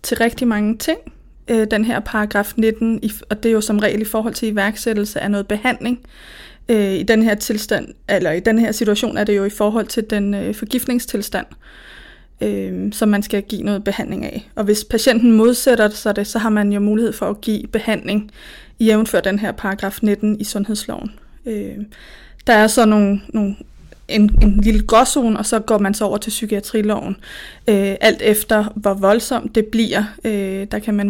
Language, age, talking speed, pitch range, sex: Danish, 20-39, 185 wpm, 205-230 Hz, female